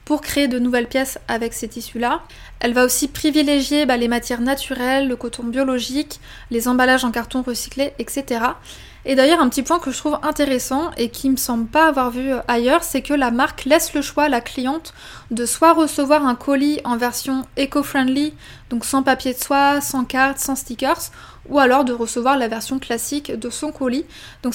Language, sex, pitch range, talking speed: French, female, 245-285 Hz, 200 wpm